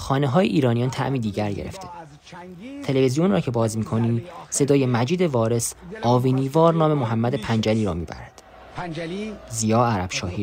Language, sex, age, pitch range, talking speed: Persian, male, 30-49, 100-125 Hz, 140 wpm